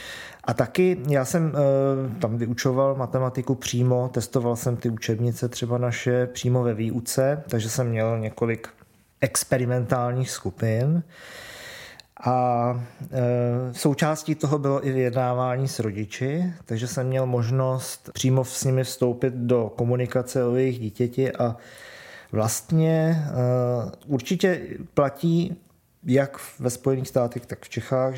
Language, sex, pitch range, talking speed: Czech, male, 120-135 Hz, 125 wpm